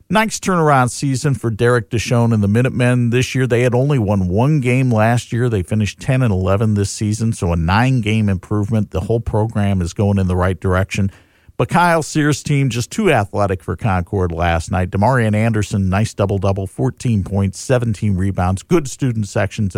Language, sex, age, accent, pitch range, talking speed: English, male, 50-69, American, 100-140 Hz, 185 wpm